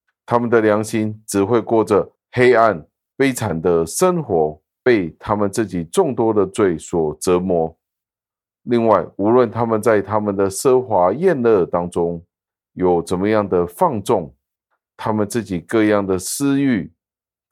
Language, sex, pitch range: Chinese, male, 90-110 Hz